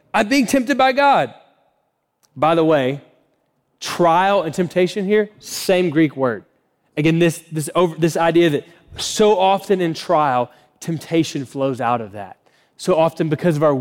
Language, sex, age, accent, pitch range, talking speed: English, male, 20-39, American, 145-195 Hz, 155 wpm